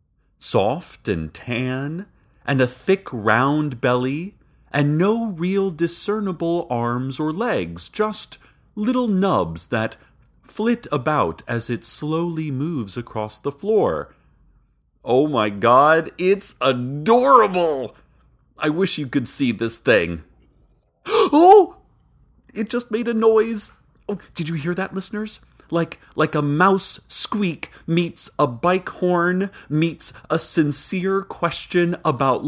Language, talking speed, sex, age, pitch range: English, 120 wpm, male, 30-49, 115-195 Hz